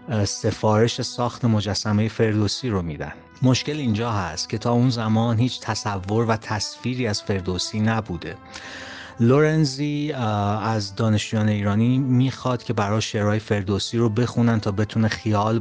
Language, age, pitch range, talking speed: Persian, 30-49, 100-115 Hz, 130 wpm